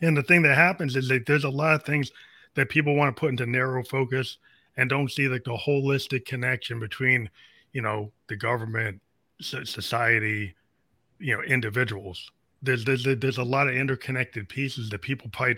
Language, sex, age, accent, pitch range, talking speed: English, male, 30-49, American, 115-135 Hz, 190 wpm